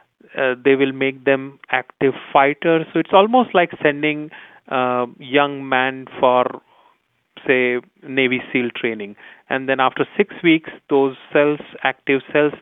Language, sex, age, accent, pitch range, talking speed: English, male, 30-49, Indian, 135-160 Hz, 140 wpm